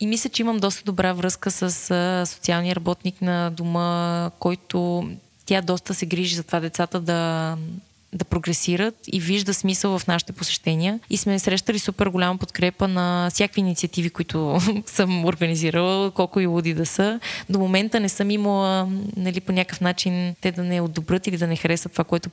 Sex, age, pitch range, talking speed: female, 20-39, 175-200 Hz, 175 wpm